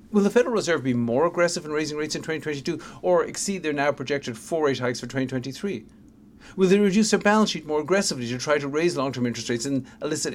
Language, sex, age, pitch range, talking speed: English, male, 50-69, 125-175 Hz, 225 wpm